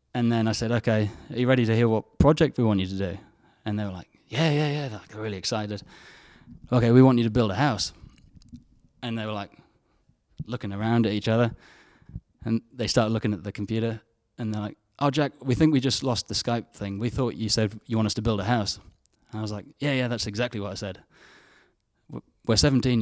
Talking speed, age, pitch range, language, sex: 230 wpm, 20-39, 105-125 Hz, English, male